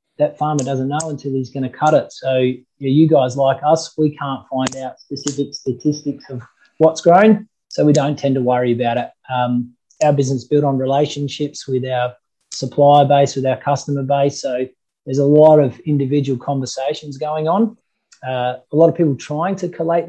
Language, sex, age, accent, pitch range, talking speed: English, male, 30-49, Australian, 135-160 Hz, 190 wpm